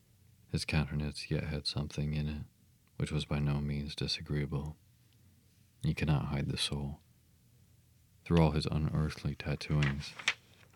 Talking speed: 130 wpm